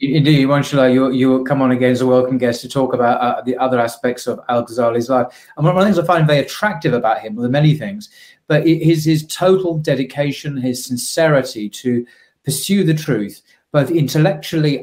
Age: 30-49